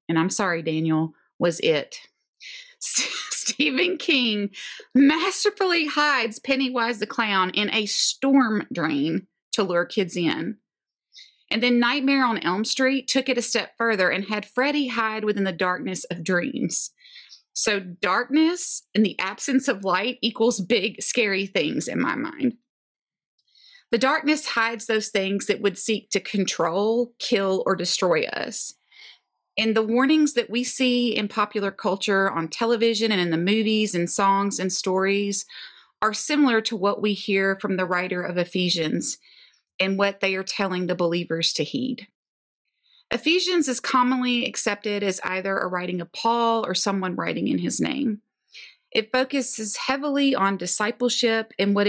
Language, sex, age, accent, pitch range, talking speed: English, female, 30-49, American, 195-255 Hz, 150 wpm